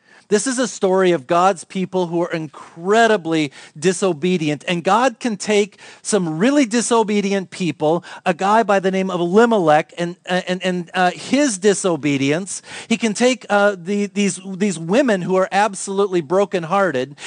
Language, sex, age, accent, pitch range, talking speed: English, male, 40-59, American, 185-230 Hz, 155 wpm